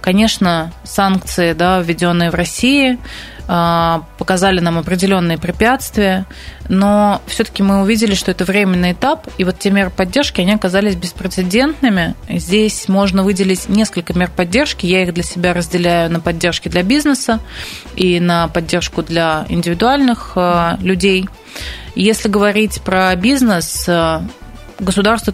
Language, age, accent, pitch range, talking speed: Russian, 20-39, native, 175-205 Hz, 120 wpm